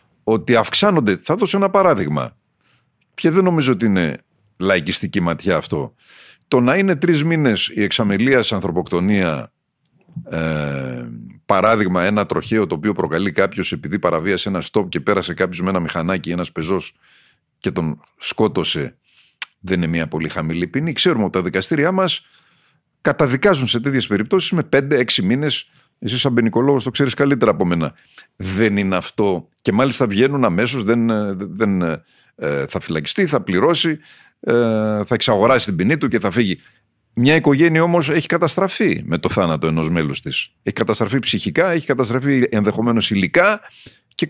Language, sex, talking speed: Greek, male, 150 wpm